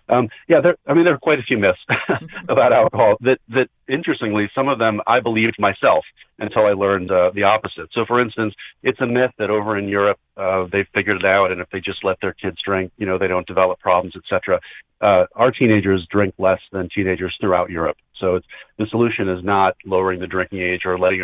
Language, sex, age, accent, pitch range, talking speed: English, male, 40-59, American, 95-110 Hz, 225 wpm